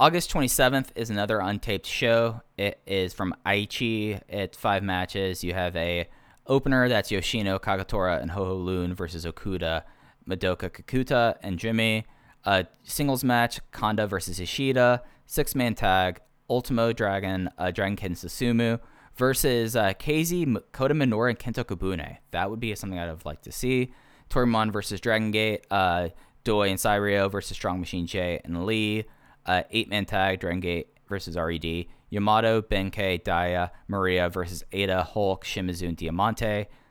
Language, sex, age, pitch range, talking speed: English, male, 10-29, 90-115 Hz, 150 wpm